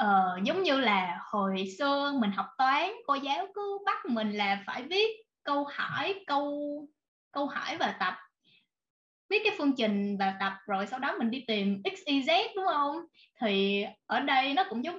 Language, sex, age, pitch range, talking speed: Vietnamese, female, 20-39, 210-310 Hz, 190 wpm